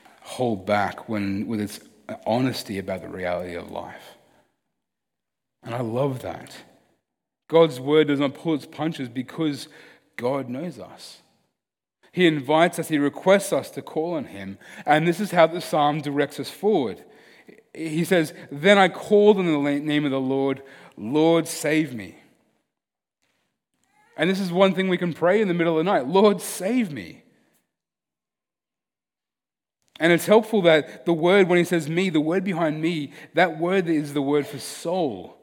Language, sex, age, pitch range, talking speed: English, male, 30-49, 135-175 Hz, 165 wpm